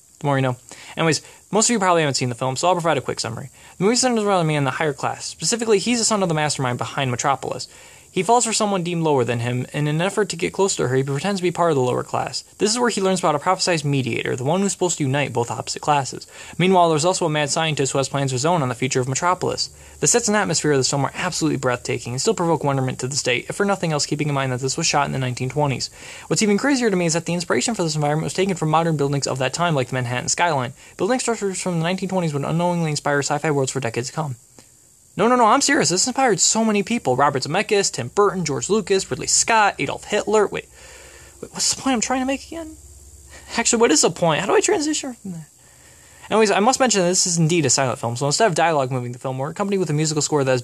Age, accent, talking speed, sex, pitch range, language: 20-39, American, 275 wpm, male, 135-190 Hz, English